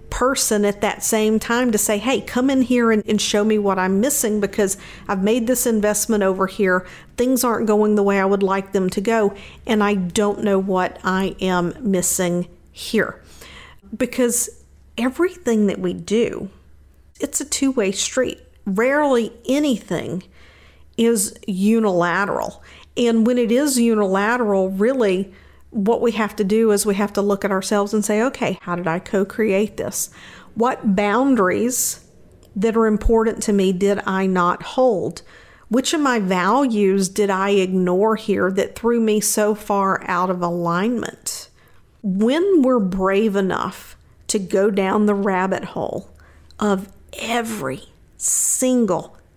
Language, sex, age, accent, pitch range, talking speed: English, female, 50-69, American, 195-230 Hz, 150 wpm